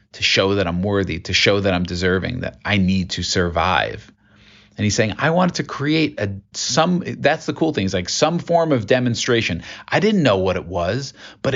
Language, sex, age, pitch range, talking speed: English, male, 40-59, 95-125 Hz, 220 wpm